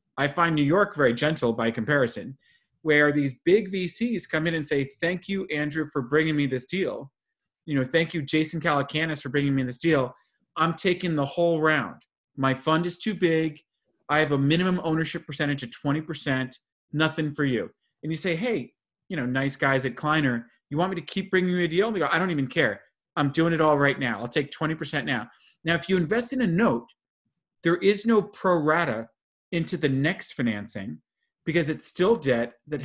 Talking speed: 205 wpm